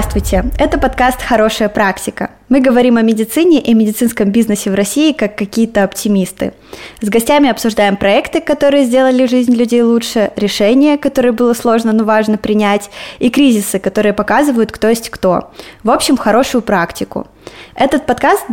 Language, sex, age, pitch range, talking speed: Russian, female, 20-39, 205-260 Hz, 150 wpm